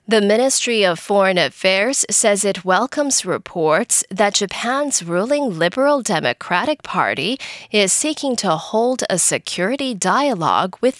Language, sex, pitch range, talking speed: English, female, 180-260 Hz, 125 wpm